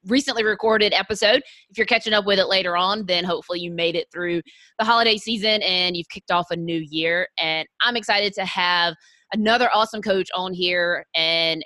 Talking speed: 195 wpm